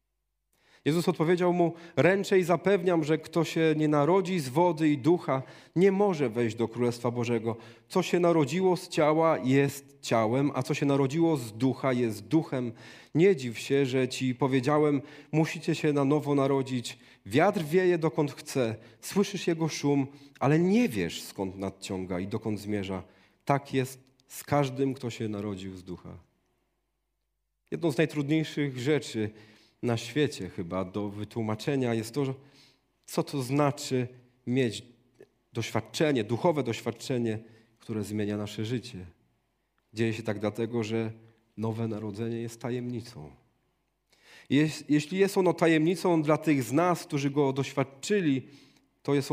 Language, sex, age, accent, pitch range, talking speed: Polish, male, 40-59, native, 115-150 Hz, 140 wpm